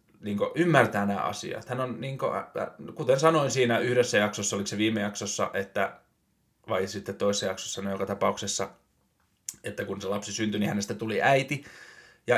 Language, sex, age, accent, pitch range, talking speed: Finnish, male, 20-39, native, 105-135 Hz, 155 wpm